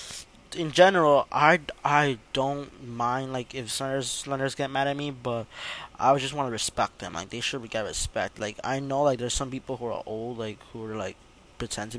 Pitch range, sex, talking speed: 120-140 Hz, male, 210 wpm